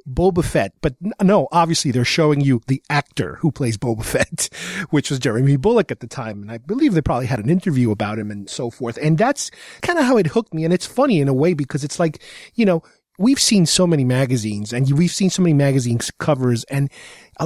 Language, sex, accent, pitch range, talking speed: English, male, American, 135-185 Hz, 230 wpm